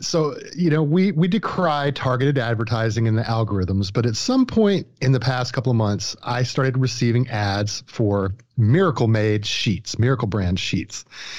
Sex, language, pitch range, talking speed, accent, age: male, English, 105-130 Hz, 170 wpm, American, 30-49